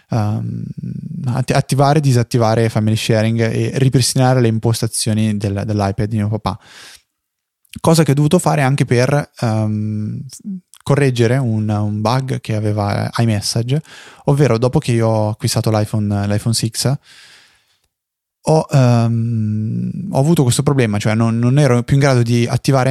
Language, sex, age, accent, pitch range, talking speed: Italian, male, 20-39, native, 110-125 Hz, 140 wpm